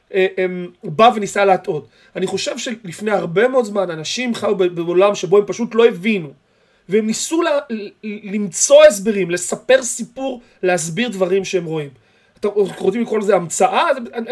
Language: Hebrew